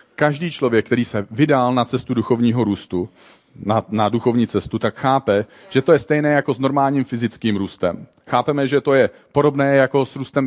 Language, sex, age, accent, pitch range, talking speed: Czech, male, 40-59, native, 110-135 Hz, 185 wpm